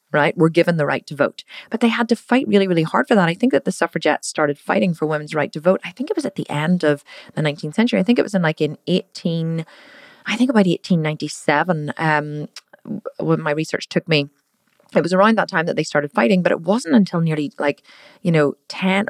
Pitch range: 155-220 Hz